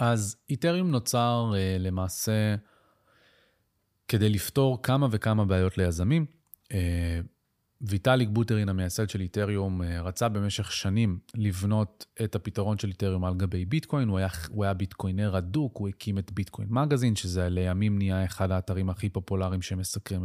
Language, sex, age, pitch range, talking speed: Hebrew, male, 30-49, 95-120 Hz, 125 wpm